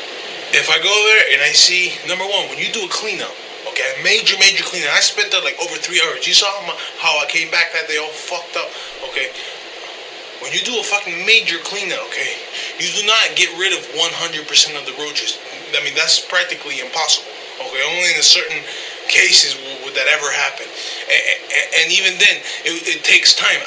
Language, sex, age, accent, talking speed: English, male, 20-39, American, 210 wpm